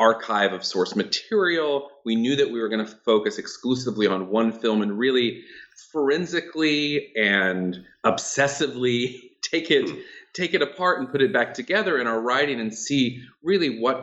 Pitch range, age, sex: 105-135 Hz, 40-59, male